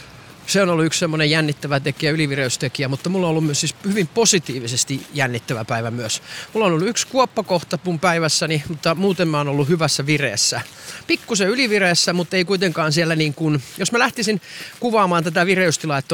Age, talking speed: 30-49, 180 wpm